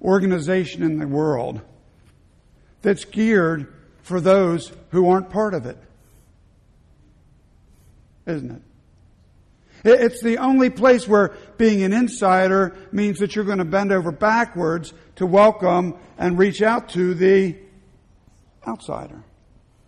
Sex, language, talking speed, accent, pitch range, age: male, English, 120 wpm, American, 165-215 Hz, 60-79